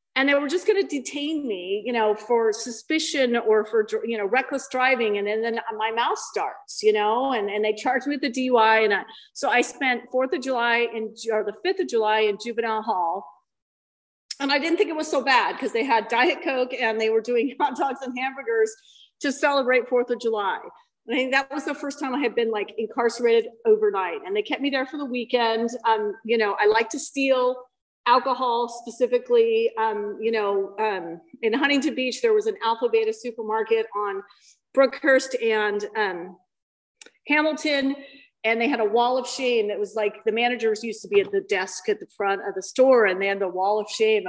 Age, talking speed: 40-59, 210 wpm